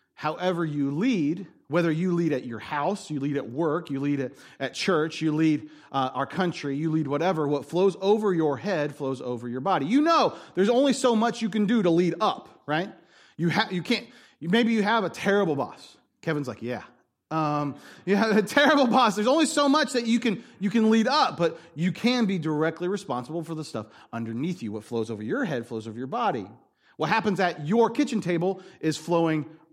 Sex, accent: male, American